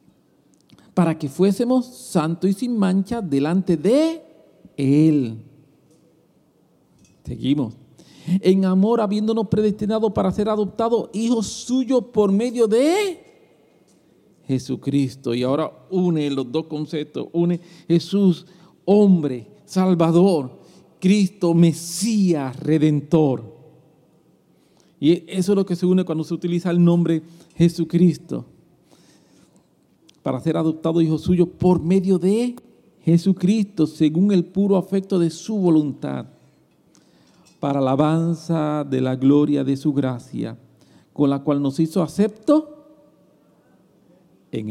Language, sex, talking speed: English, male, 110 wpm